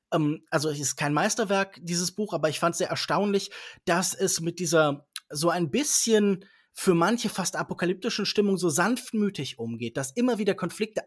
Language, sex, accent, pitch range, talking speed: German, male, German, 155-205 Hz, 175 wpm